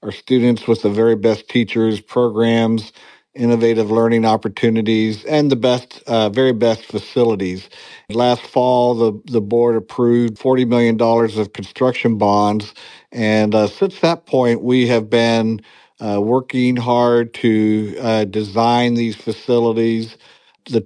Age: 50-69